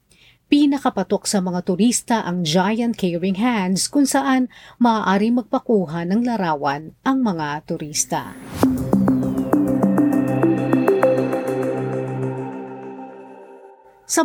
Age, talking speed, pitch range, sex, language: 40-59, 70 wpm, 180-230 Hz, female, Filipino